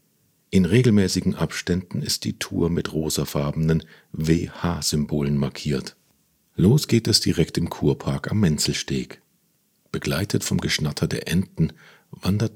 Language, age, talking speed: German, 50-69, 115 wpm